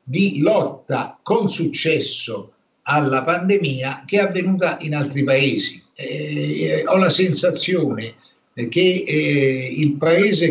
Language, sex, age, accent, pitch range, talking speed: Italian, male, 50-69, native, 135-180 Hz, 115 wpm